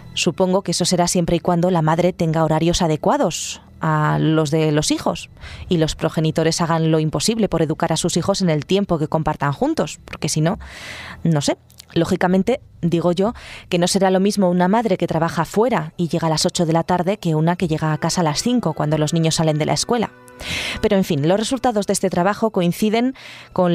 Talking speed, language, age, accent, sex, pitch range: 215 wpm, Spanish, 20-39, Spanish, female, 160-195 Hz